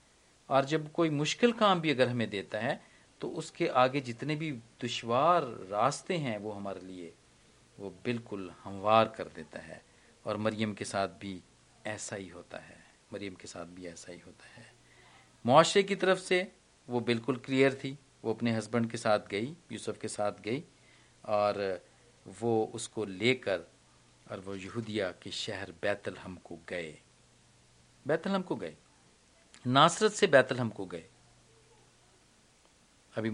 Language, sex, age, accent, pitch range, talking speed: Hindi, male, 50-69, native, 105-140 Hz, 150 wpm